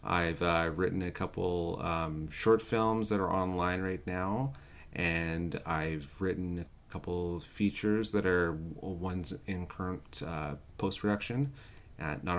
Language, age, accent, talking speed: English, 30-49, American, 130 wpm